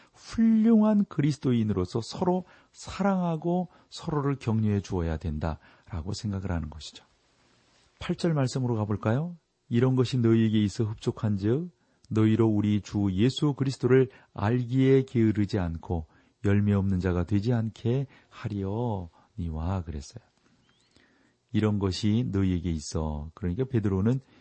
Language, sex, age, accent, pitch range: Korean, male, 40-59, native, 95-125 Hz